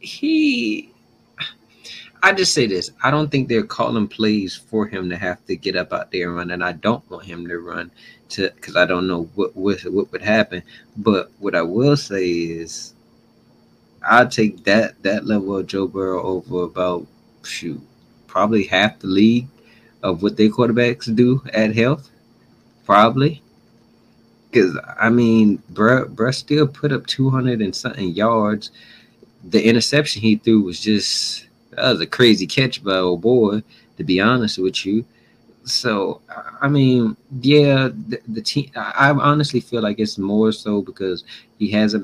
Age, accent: 20-39, American